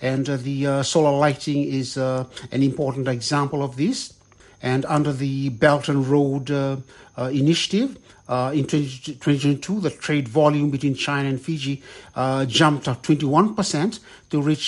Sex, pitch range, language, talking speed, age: male, 135-165 Hz, English, 155 wpm, 60-79